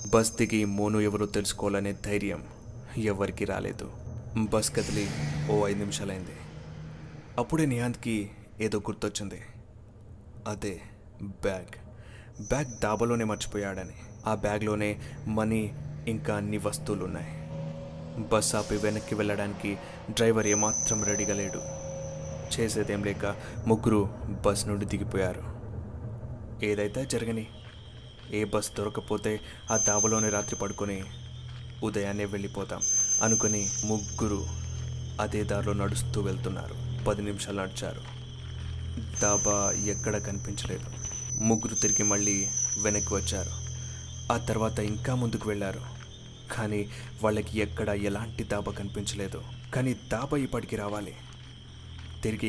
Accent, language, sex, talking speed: native, Telugu, male, 95 wpm